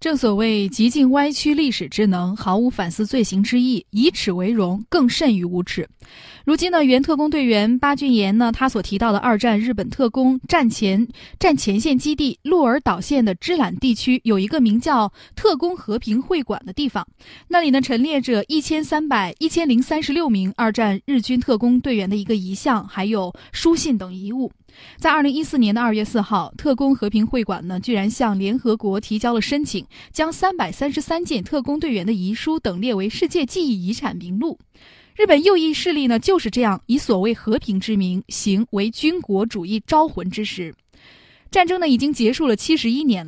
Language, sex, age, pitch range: Chinese, female, 10-29, 210-295 Hz